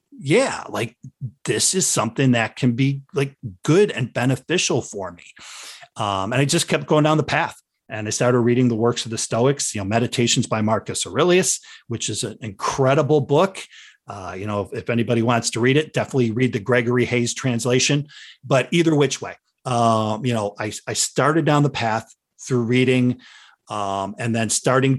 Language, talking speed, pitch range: English, 185 wpm, 110-130 Hz